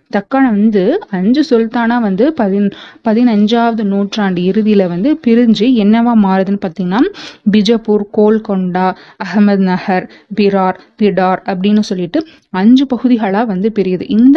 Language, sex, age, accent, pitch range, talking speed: Tamil, female, 30-49, native, 195-235 Hz, 115 wpm